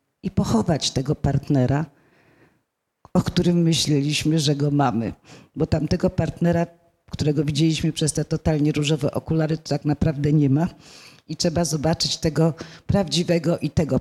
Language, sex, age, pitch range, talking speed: Polish, female, 40-59, 140-165 Hz, 135 wpm